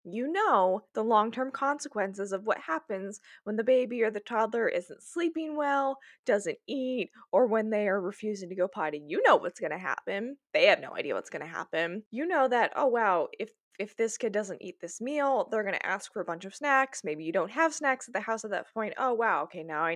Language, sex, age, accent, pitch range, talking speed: English, female, 20-39, American, 195-275 Hz, 240 wpm